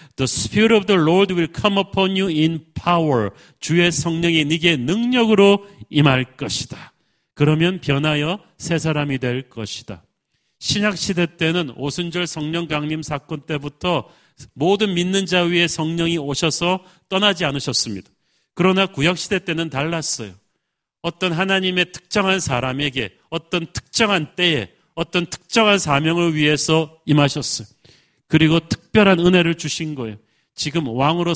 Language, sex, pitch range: Korean, male, 135-175 Hz